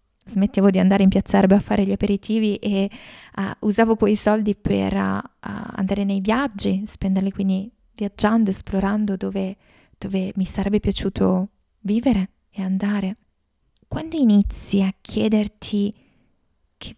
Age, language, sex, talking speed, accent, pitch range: 20-39, Italian, female, 130 wpm, native, 195-220 Hz